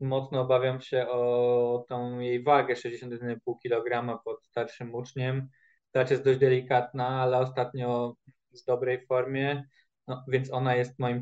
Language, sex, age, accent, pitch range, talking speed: Polish, male, 20-39, native, 125-145 Hz, 140 wpm